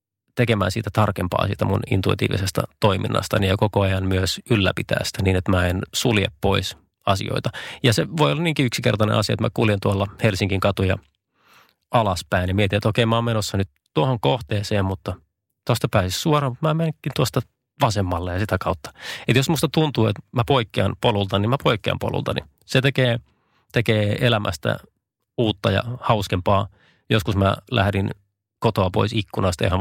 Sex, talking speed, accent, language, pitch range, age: male, 165 wpm, native, Finnish, 95-120 Hz, 30-49